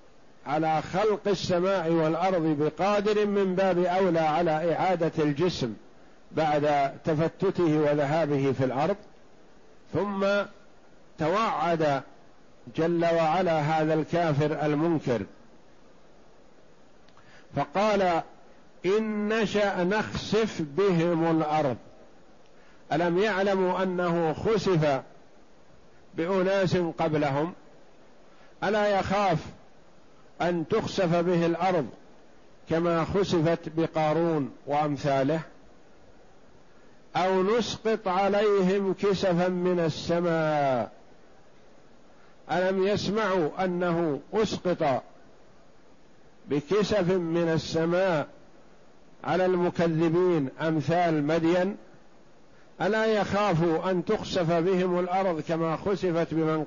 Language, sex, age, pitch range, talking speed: Arabic, male, 50-69, 155-190 Hz, 75 wpm